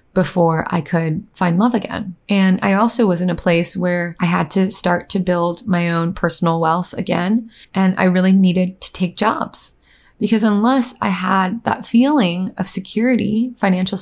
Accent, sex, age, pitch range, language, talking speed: American, female, 20-39, 175-215 Hz, English, 175 wpm